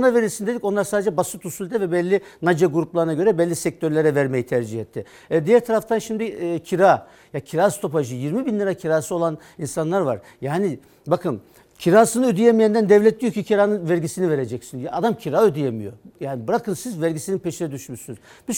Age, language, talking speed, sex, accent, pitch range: 60-79, Turkish, 170 wpm, male, native, 155-205 Hz